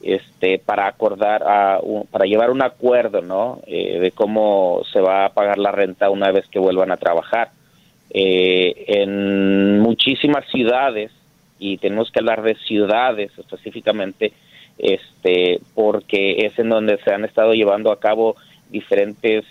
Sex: male